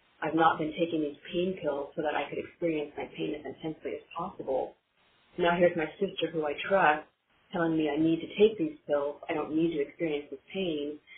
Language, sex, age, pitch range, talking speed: English, female, 30-49, 150-170 Hz, 215 wpm